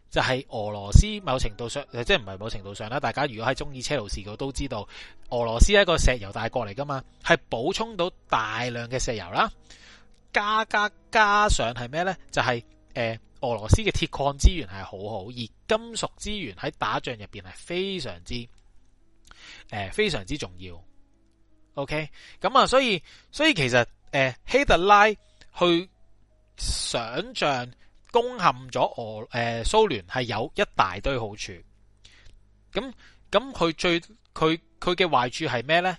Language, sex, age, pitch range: Chinese, male, 30-49, 110-175 Hz